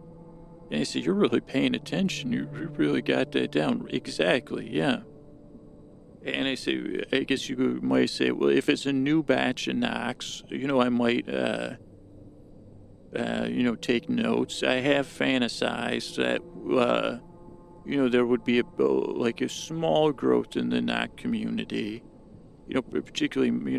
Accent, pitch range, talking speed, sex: American, 100-145 Hz, 155 wpm, male